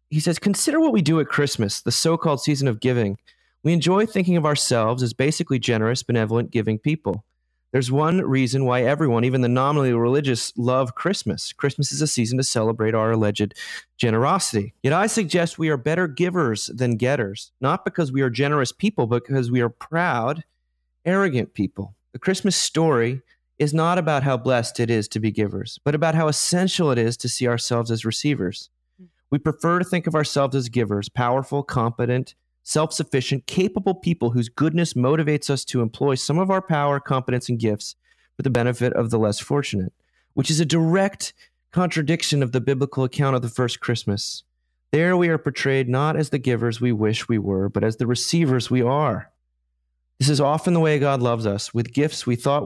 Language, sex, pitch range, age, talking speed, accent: English, male, 115-155 Hz, 30-49, 190 wpm, American